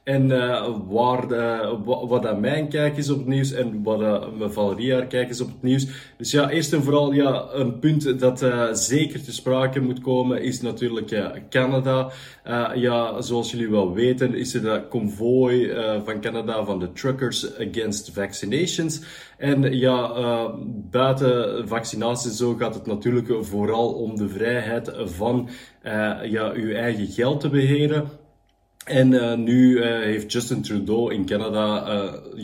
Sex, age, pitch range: male, 20-39, 110-130 Hz